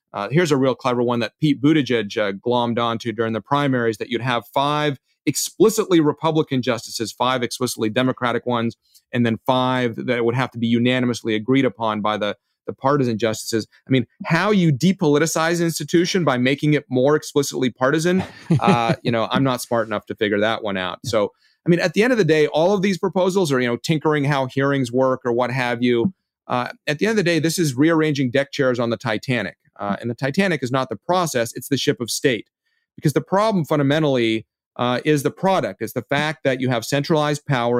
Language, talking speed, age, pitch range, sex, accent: English, 215 wpm, 30-49, 115-155 Hz, male, American